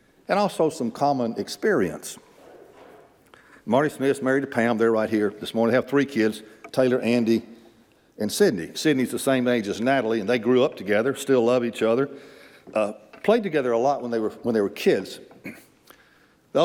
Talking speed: 185 wpm